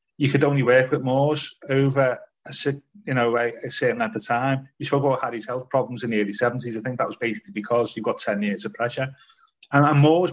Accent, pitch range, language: British, 120-155 Hz, English